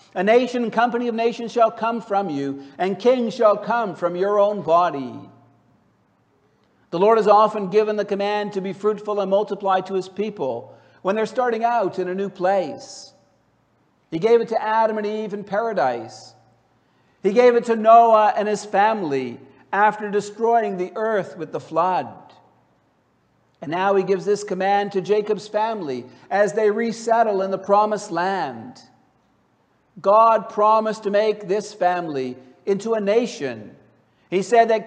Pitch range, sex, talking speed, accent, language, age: 185-220 Hz, male, 160 wpm, American, English, 60-79